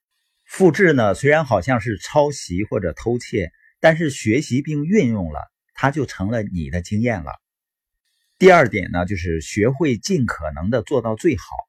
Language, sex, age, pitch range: Chinese, male, 50-69, 95-160 Hz